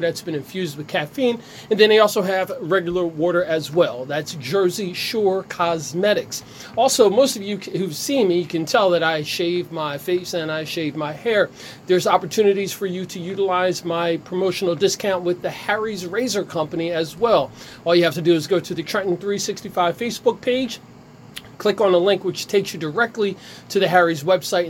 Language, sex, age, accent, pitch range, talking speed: English, male, 40-59, American, 170-210 Hz, 190 wpm